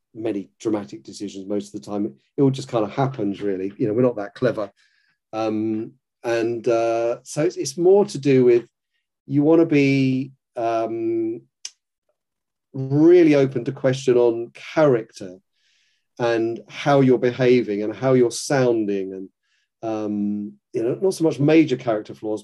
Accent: British